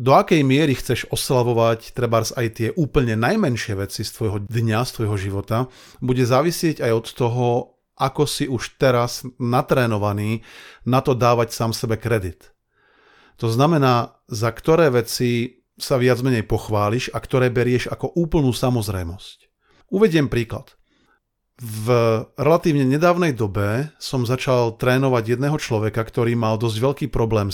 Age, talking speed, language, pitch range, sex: 40-59, 140 wpm, Slovak, 110-130 Hz, male